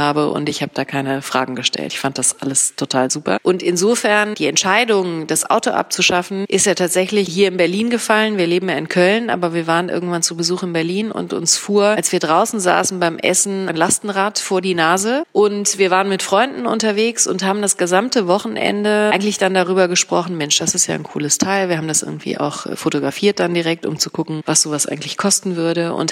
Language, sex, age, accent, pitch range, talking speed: German, female, 30-49, German, 160-195 Hz, 215 wpm